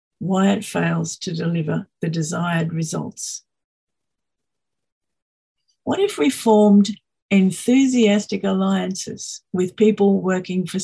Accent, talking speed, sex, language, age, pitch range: Australian, 100 wpm, female, English, 50-69, 190-245 Hz